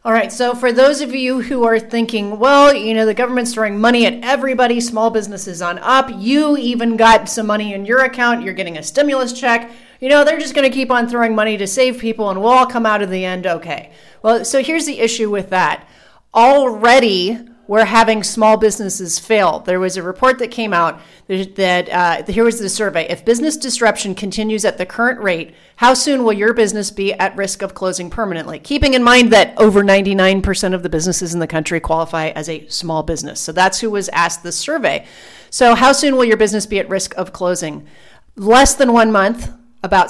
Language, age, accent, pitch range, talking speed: English, 40-59, American, 190-240 Hz, 215 wpm